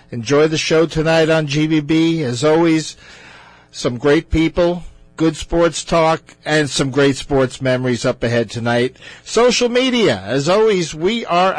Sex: male